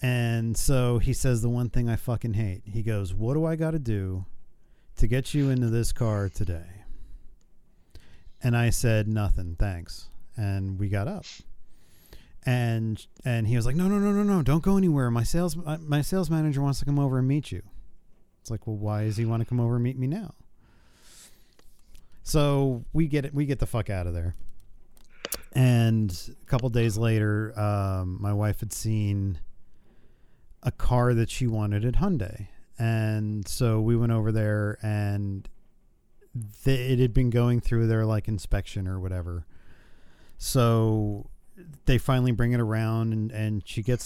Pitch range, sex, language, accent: 105-135 Hz, male, English, American